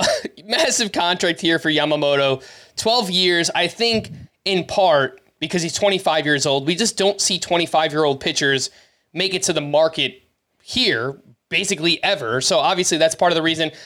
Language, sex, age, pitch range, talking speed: English, male, 20-39, 145-180 Hz, 170 wpm